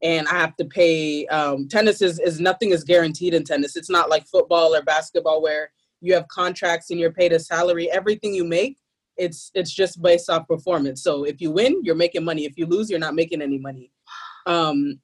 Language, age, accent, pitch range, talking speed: English, 20-39, American, 165-195 Hz, 215 wpm